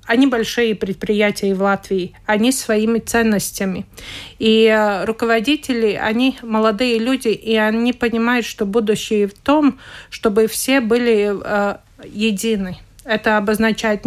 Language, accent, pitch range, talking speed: Russian, native, 210-245 Hz, 120 wpm